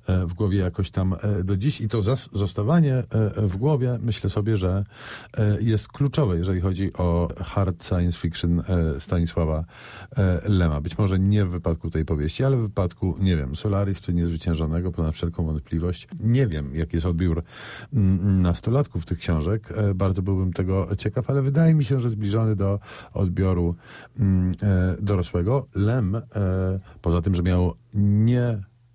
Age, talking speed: 50-69, 145 wpm